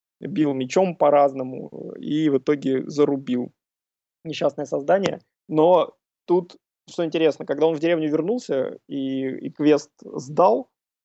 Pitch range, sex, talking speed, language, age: 140-160 Hz, male, 120 wpm, Russian, 20-39